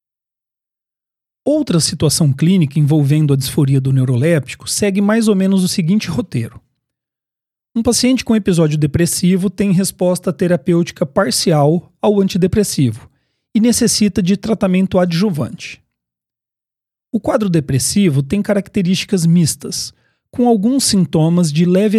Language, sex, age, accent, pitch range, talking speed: Portuguese, male, 40-59, Brazilian, 150-200 Hz, 115 wpm